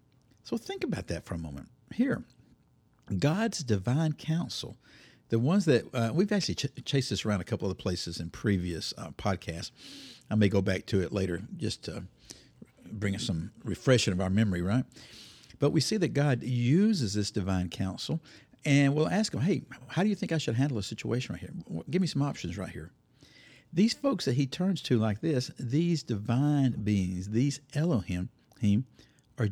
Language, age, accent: English, 50-69, American